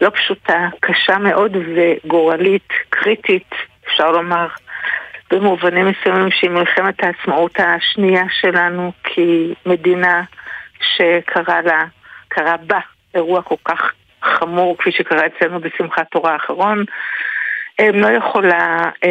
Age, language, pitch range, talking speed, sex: 60-79, Hebrew, 170-195 Hz, 100 wpm, female